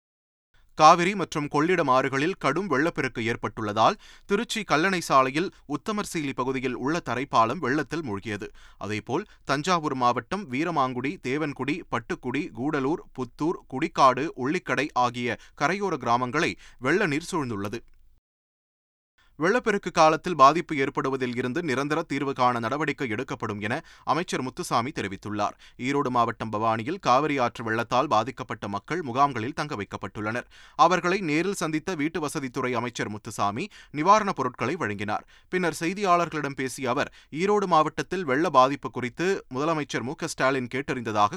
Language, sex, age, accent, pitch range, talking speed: Tamil, male, 30-49, native, 120-165 Hz, 115 wpm